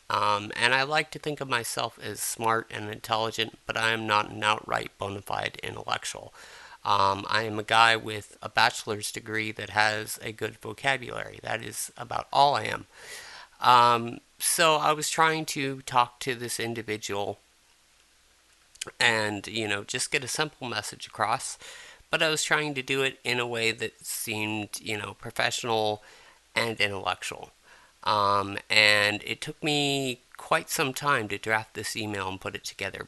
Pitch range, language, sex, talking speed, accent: 105-120 Hz, English, male, 170 wpm, American